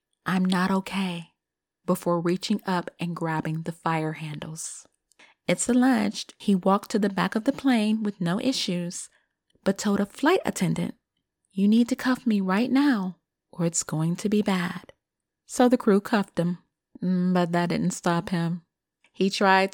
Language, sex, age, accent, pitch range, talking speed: English, female, 30-49, American, 170-200 Hz, 165 wpm